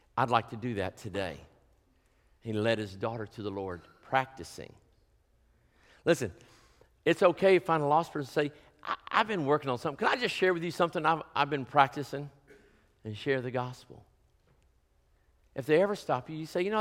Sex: male